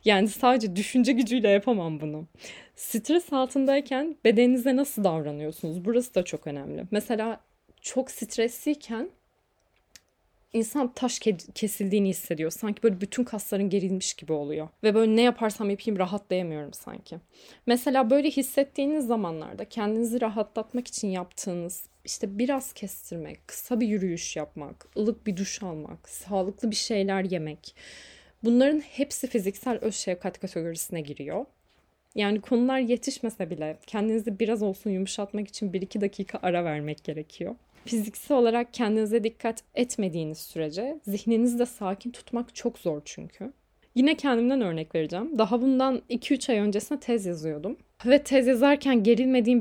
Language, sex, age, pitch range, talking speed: Turkish, female, 10-29, 190-245 Hz, 130 wpm